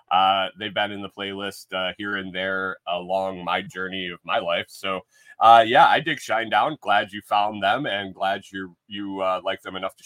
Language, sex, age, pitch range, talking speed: English, male, 20-39, 95-130 Hz, 220 wpm